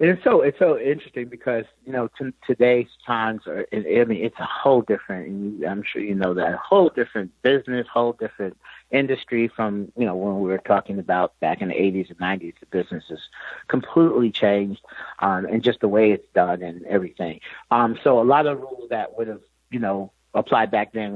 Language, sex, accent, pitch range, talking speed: English, male, American, 105-135 Hz, 205 wpm